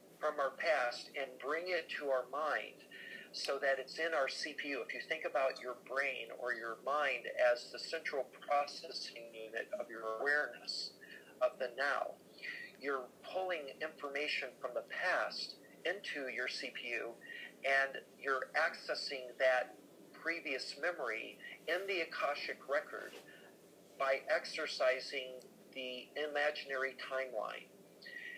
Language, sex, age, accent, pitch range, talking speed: English, male, 50-69, American, 130-150 Hz, 125 wpm